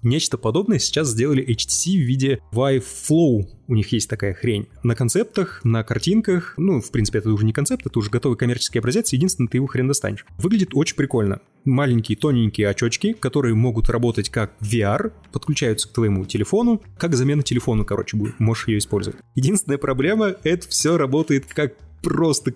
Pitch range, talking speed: 115-145 Hz, 175 wpm